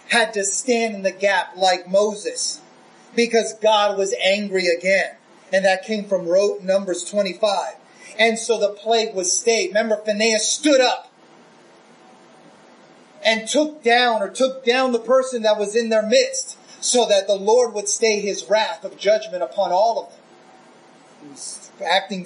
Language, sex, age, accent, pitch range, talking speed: English, male, 30-49, American, 200-265 Hz, 160 wpm